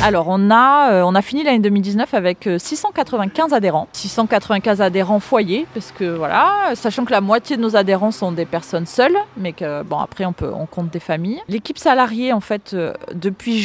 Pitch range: 170-220 Hz